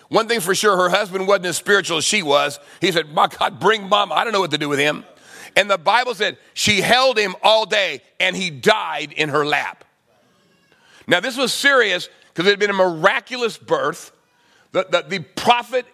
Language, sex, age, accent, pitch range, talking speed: English, male, 40-59, American, 185-225 Hz, 210 wpm